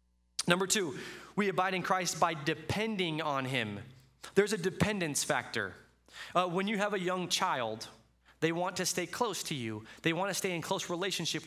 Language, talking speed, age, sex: English, 185 wpm, 20-39, male